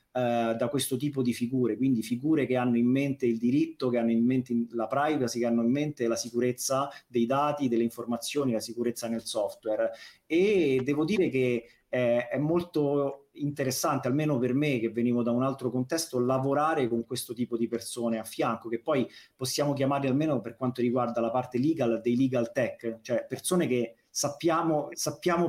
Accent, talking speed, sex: native, 180 wpm, male